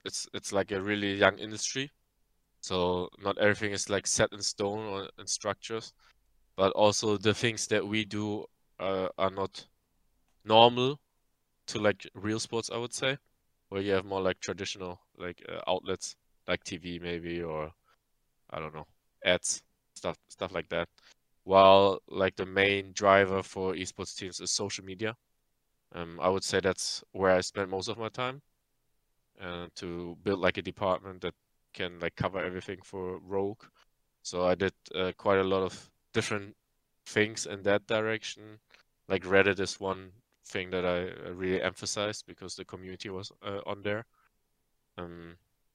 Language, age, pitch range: English, 20-39, 95-105 Hz